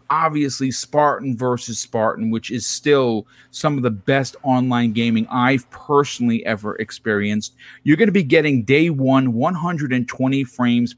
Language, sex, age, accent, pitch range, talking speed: English, male, 40-59, American, 120-155 Hz, 140 wpm